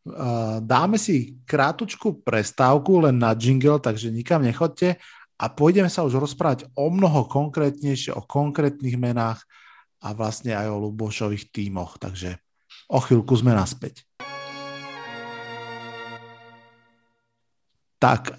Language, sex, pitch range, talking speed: Slovak, male, 120-145 Hz, 110 wpm